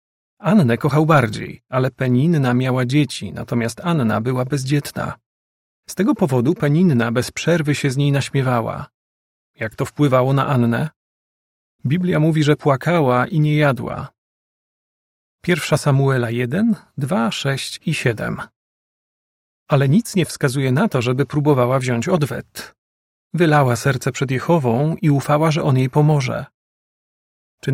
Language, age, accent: Polish, 40-59, native